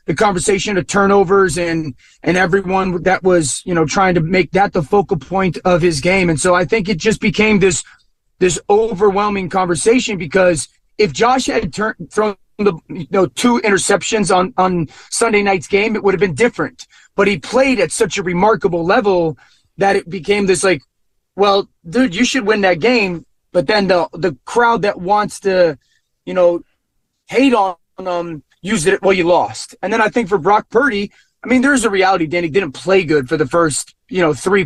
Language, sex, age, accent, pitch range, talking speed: English, male, 30-49, American, 175-210 Hz, 195 wpm